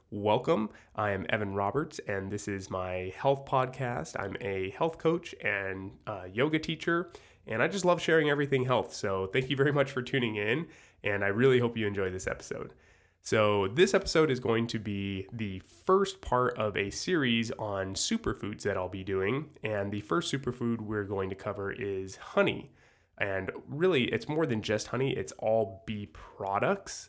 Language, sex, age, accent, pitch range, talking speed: English, male, 20-39, American, 100-135 Hz, 180 wpm